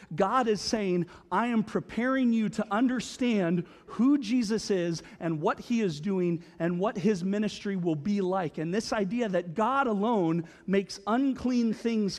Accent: American